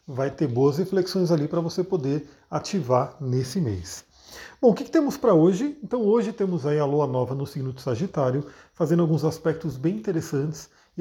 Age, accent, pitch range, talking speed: 40-59, Brazilian, 140-185 Hz, 185 wpm